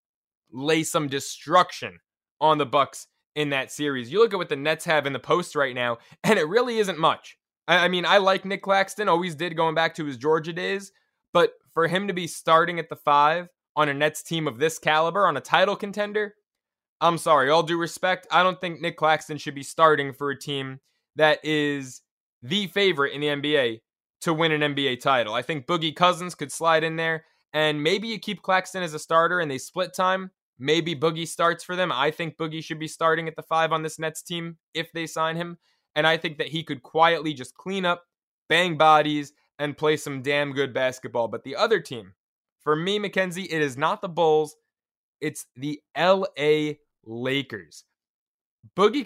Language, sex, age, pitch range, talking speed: English, male, 20-39, 145-175 Hz, 205 wpm